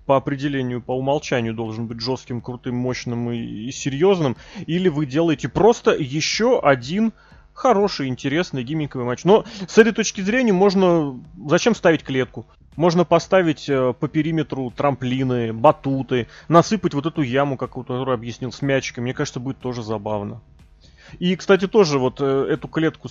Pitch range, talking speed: 125-160 Hz, 145 wpm